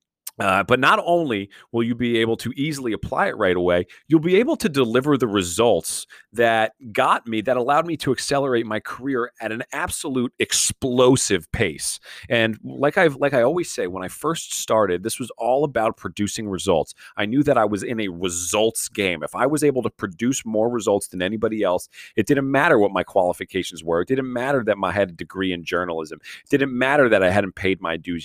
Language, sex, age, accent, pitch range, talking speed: English, male, 30-49, American, 100-130 Hz, 210 wpm